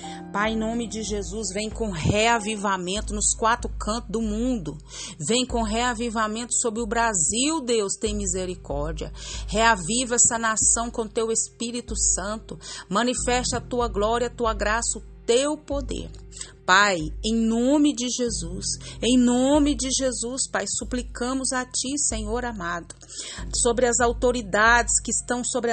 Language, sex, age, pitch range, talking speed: Portuguese, female, 40-59, 215-250 Hz, 140 wpm